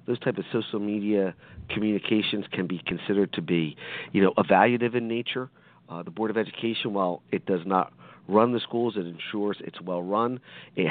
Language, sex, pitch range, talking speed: English, male, 95-120 Hz, 185 wpm